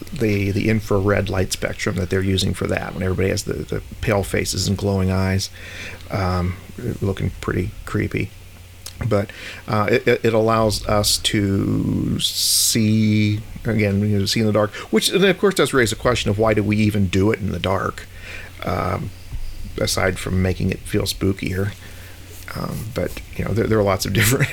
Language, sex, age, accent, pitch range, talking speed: English, male, 40-59, American, 95-110 Hz, 175 wpm